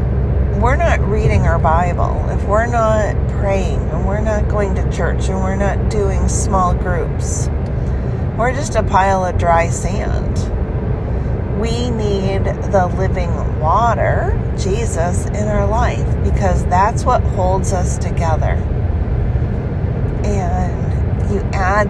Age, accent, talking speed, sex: 40-59, American, 125 wpm, female